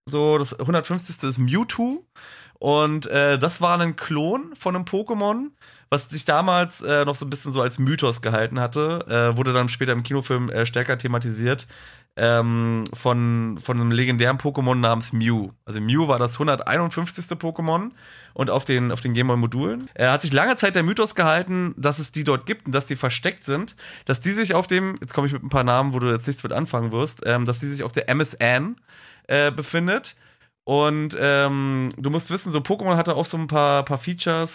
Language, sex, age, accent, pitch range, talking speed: German, male, 30-49, German, 120-155 Hz, 200 wpm